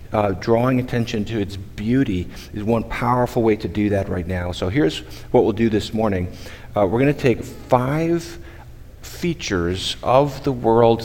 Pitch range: 95-120 Hz